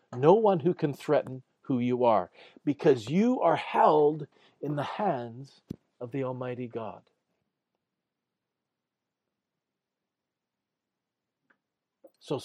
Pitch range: 125-170 Hz